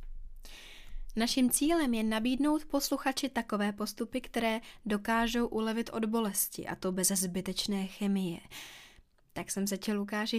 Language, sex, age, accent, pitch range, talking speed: Czech, female, 20-39, native, 190-225 Hz, 125 wpm